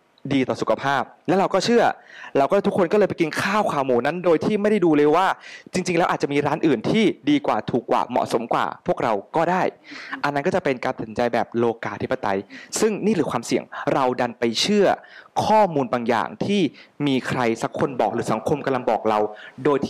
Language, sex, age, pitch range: Thai, male, 20-39, 115-175 Hz